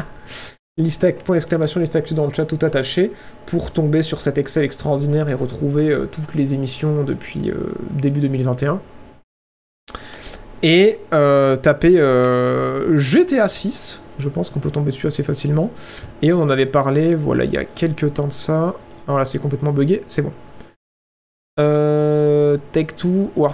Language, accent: French, French